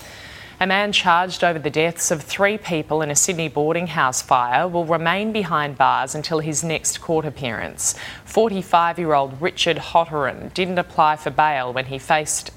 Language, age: English, 20-39